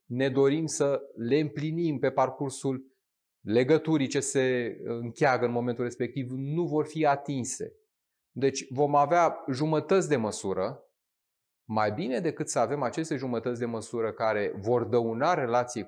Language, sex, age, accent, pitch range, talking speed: Romanian, male, 30-49, native, 120-160 Hz, 140 wpm